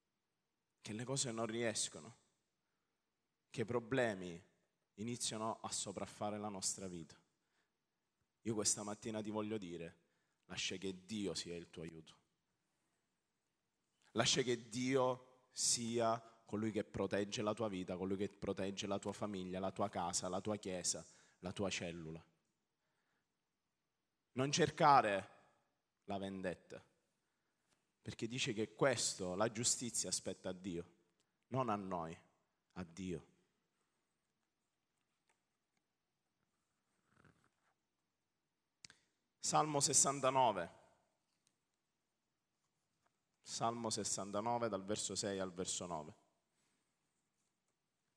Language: Italian